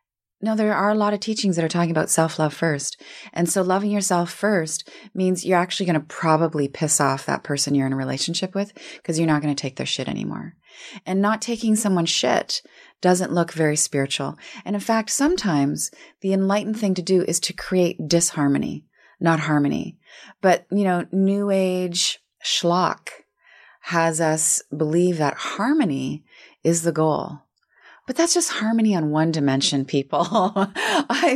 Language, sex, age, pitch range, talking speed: English, female, 30-49, 145-195 Hz, 170 wpm